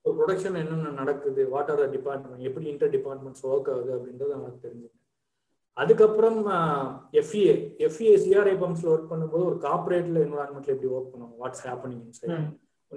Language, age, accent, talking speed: Tamil, 20-39, native, 55 wpm